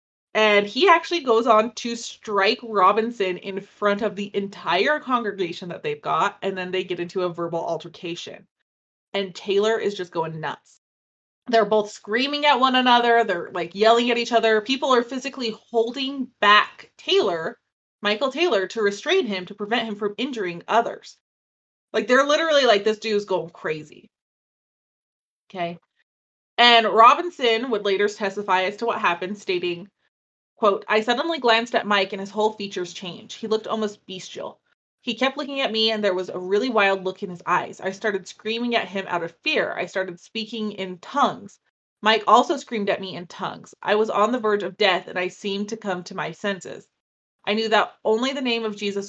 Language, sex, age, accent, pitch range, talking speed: English, female, 20-39, American, 190-230 Hz, 185 wpm